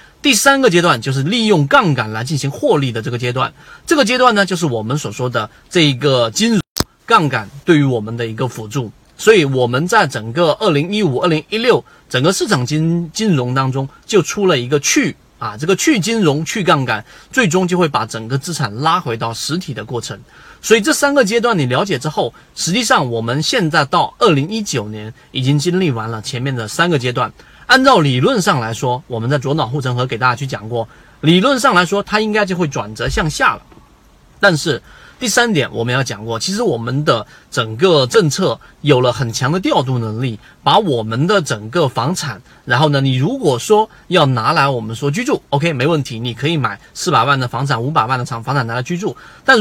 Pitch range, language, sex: 125-180 Hz, Chinese, male